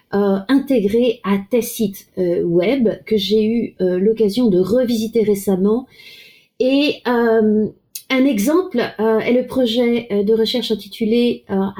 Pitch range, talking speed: 195-245 Hz, 135 wpm